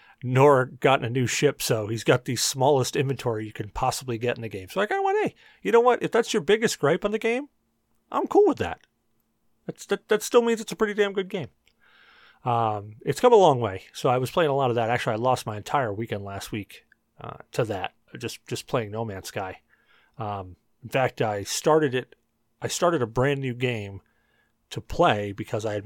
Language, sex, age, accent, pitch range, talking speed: English, male, 40-59, American, 115-155 Hz, 225 wpm